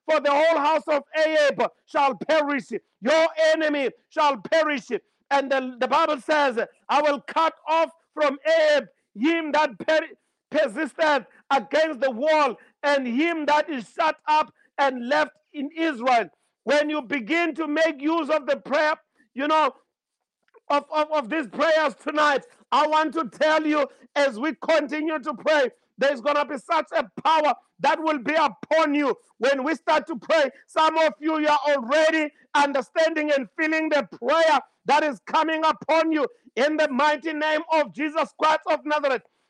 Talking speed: 165 wpm